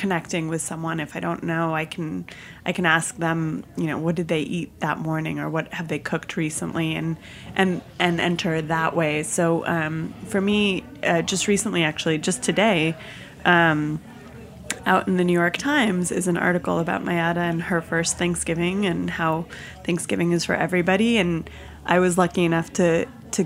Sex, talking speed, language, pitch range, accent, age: female, 185 wpm, English, 165-185 Hz, American, 20-39